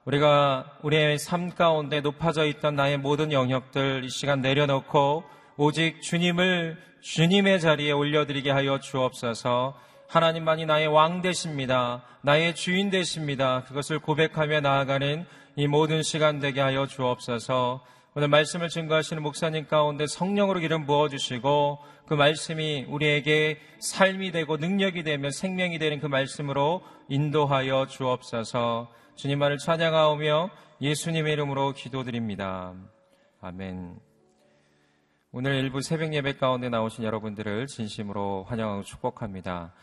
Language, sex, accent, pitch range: Korean, male, native, 120-155 Hz